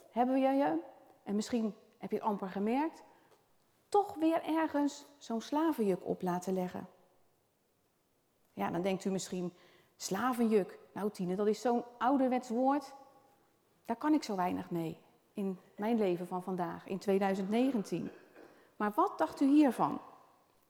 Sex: female